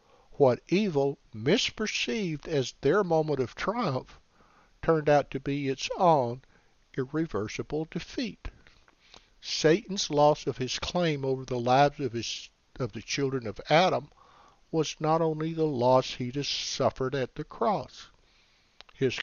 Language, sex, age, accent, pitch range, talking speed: English, male, 60-79, American, 125-155 Hz, 135 wpm